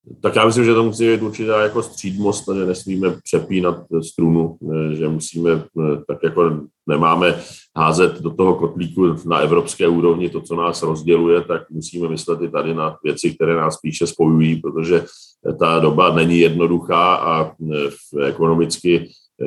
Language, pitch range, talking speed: Czech, 75-85 Hz, 150 wpm